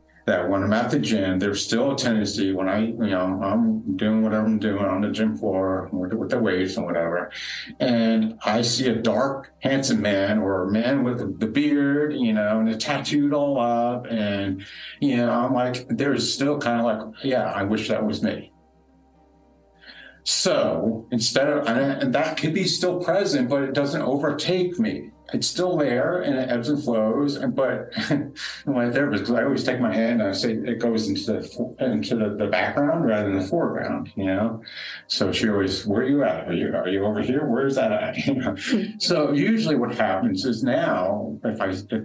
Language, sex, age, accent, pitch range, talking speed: English, male, 50-69, American, 100-135 Hz, 195 wpm